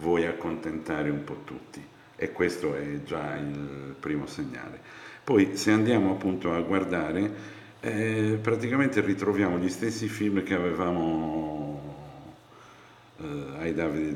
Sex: male